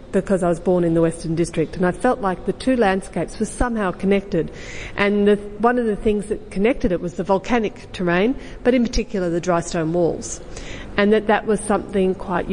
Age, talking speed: 50-69, 205 wpm